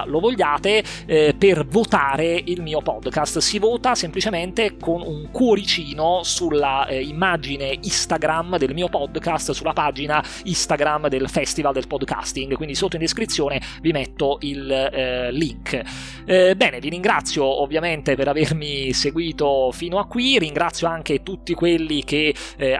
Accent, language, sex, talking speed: native, Italian, male, 140 wpm